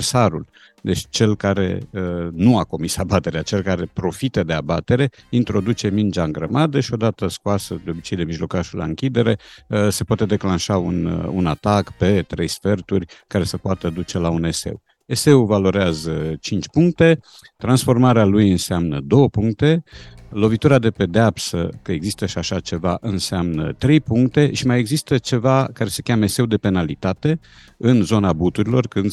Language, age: Romanian, 50-69